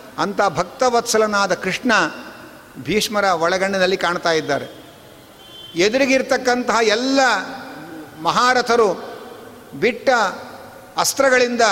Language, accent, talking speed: Kannada, native, 60 wpm